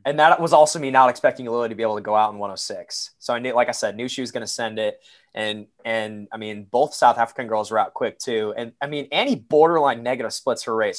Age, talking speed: 20-39, 270 wpm